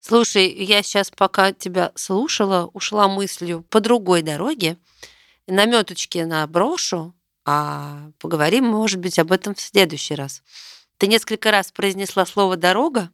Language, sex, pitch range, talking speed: Russian, female, 170-220 Hz, 135 wpm